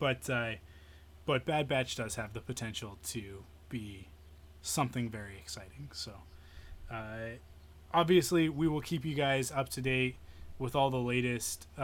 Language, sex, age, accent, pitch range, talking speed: English, male, 20-39, American, 110-130 Hz, 145 wpm